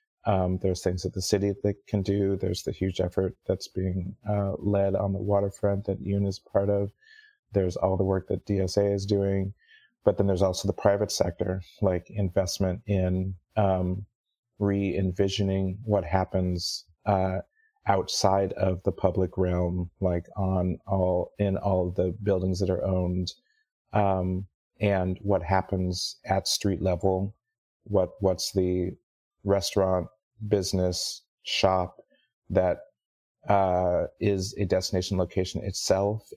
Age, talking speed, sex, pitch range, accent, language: 30-49, 135 wpm, male, 90-100 Hz, American, English